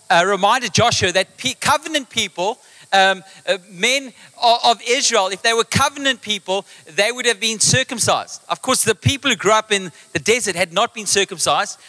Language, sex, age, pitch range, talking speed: English, male, 30-49, 195-250 Hz, 180 wpm